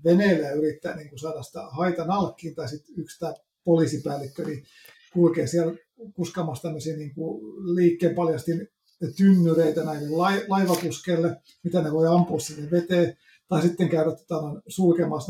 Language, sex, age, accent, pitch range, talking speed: Finnish, male, 50-69, native, 155-175 Hz, 135 wpm